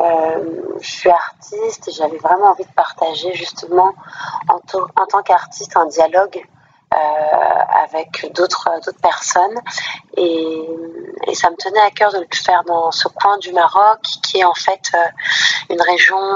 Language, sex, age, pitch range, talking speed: French, female, 30-49, 165-200 Hz, 155 wpm